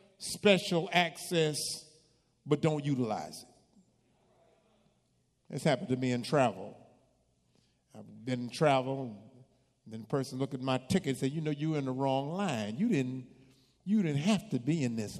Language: English